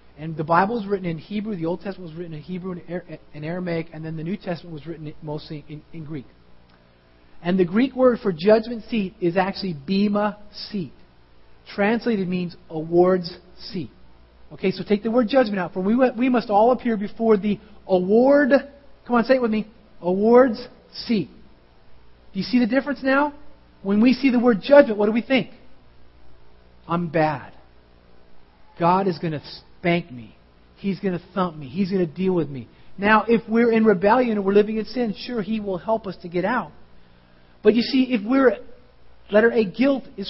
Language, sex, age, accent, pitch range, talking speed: English, male, 40-59, American, 155-235 Hz, 190 wpm